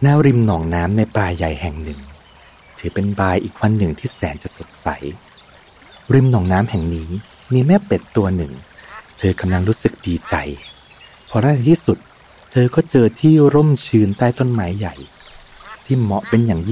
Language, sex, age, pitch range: Thai, male, 30-49, 85-115 Hz